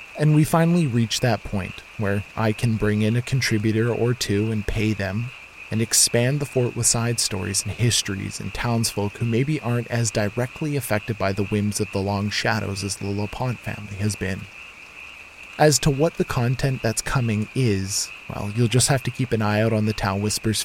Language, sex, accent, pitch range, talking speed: English, male, American, 105-120 Hz, 200 wpm